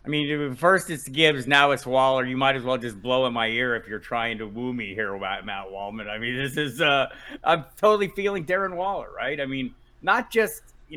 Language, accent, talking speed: English, American, 235 wpm